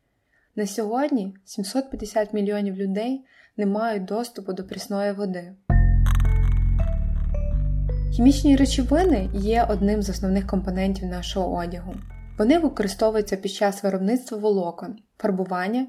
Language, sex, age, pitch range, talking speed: Ukrainian, female, 20-39, 190-220 Hz, 100 wpm